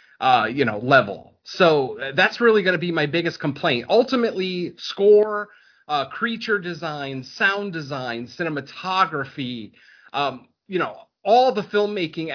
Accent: American